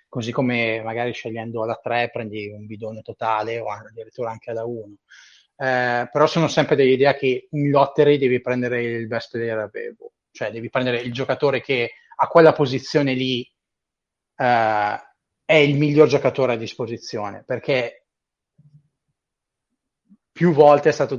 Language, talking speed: Italian, 145 wpm